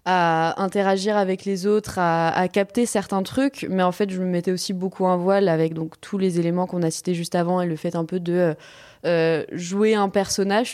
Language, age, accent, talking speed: French, 20-39, French, 225 wpm